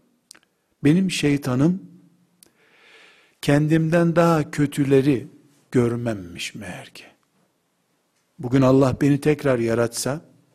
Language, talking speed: Turkish, 75 wpm